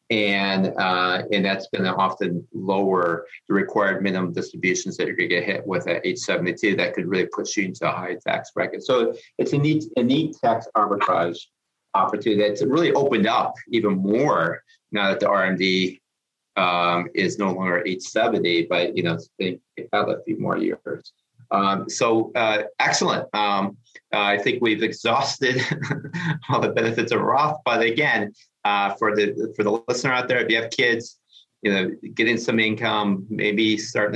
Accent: American